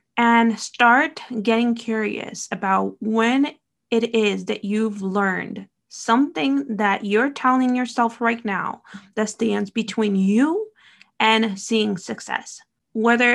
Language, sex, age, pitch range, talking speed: English, female, 20-39, 210-240 Hz, 115 wpm